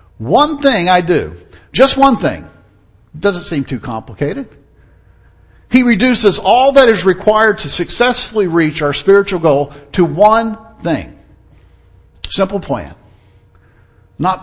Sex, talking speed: male, 120 wpm